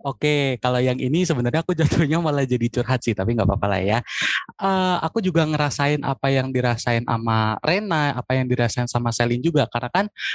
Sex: male